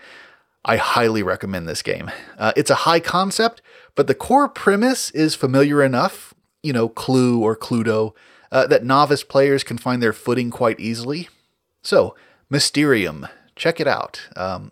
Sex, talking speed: male, 155 wpm